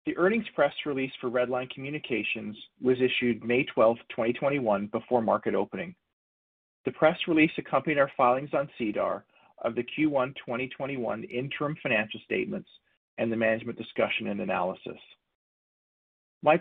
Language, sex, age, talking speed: English, male, 40-59, 135 wpm